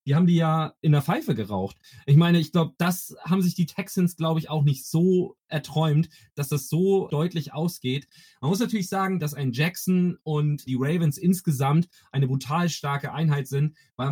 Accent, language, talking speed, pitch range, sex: German, German, 190 wpm, 145-180 Hz, male